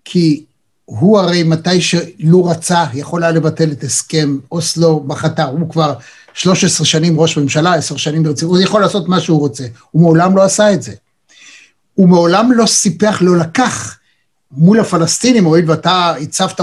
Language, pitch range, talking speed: Hebrew, 160-245 Hz, 160 wpm